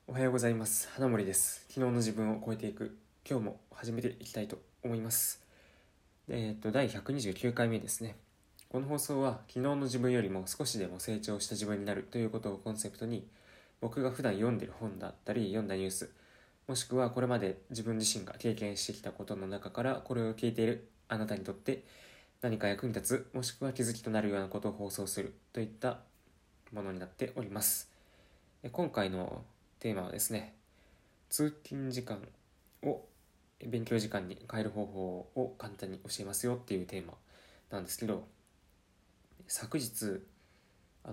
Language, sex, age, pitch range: Japanese, male, 20-39, 100-125 Hz